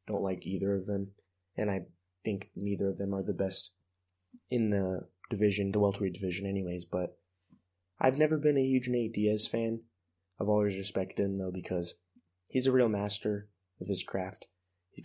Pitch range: 95-105 Hz